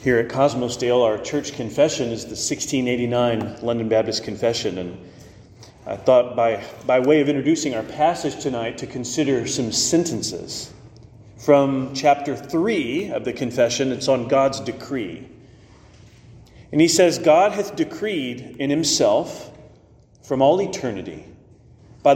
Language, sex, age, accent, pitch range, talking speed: English, male, 40-59, American, 120-150 Hz, 135 wpm